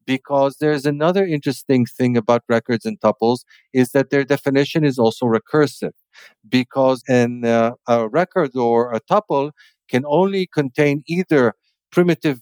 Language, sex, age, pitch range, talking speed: English, male, 50-69, 120-150 Hz, 145 wpm